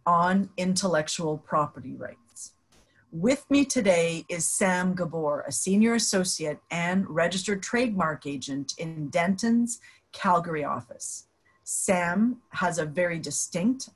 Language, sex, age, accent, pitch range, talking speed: English, female, 40-59, American, 160-200 Hz, 110 wpm